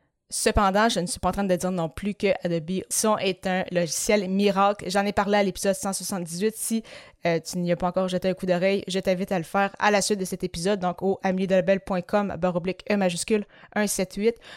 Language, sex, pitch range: French, female, 180-205 Hz